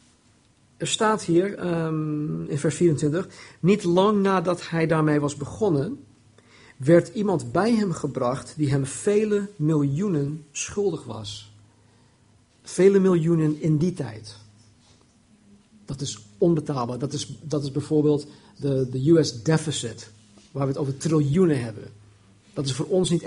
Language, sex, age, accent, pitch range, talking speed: Dutch, male, 50-69, Dutch, 130-180 Hz, 130 wpm